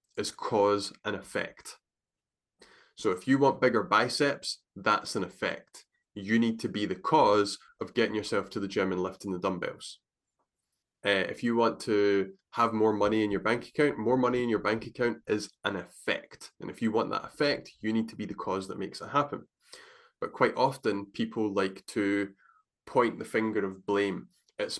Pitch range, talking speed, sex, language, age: 100-150 Hz, 190 wpm, male, English, 20-39